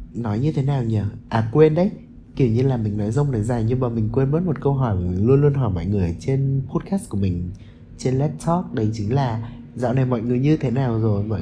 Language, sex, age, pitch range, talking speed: Vietnamese, male, 20-39, 115-150 Hz, 265 wpm